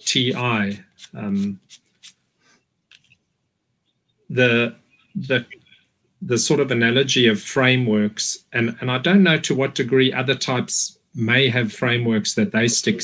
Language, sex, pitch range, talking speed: English, male, 125-145 Hz, 120 wpm